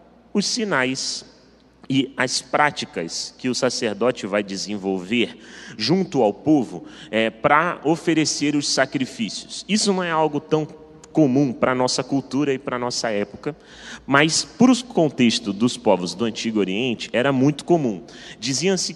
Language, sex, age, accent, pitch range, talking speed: Portuguese, male, 30-49, Brazilian, 125-165 Hz, 145 wpm